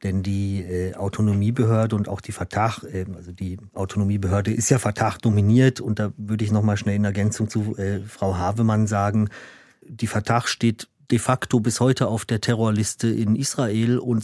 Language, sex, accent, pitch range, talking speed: German, male, German, 105-120 Hz, 175 wpm